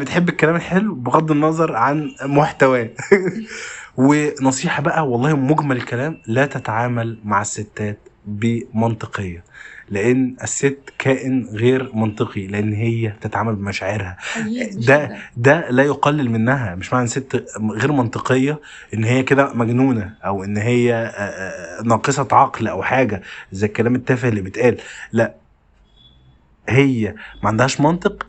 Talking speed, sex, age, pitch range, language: 120 wpm, male, 20-39, 110-135 Hz, Arabic